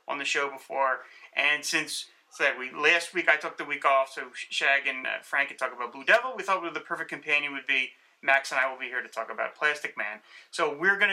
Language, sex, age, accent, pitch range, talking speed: English, male, 30-49, American, 135-165 Hz, 260 wpm